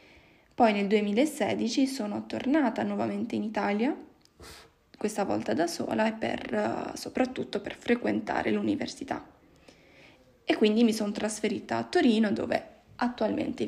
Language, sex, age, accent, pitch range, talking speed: Italian, female, 20-39, native, 215-245 Hz, 115 wpm